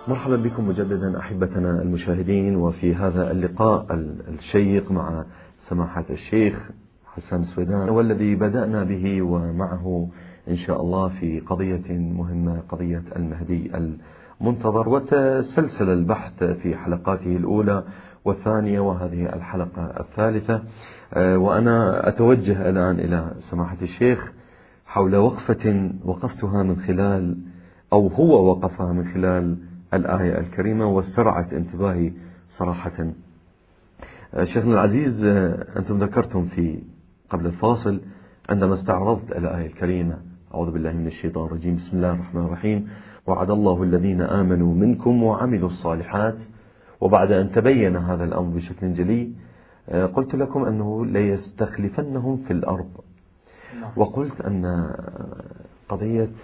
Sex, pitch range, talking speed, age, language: male, 90-105 Hz, 105 wpm, 40-59, Arabic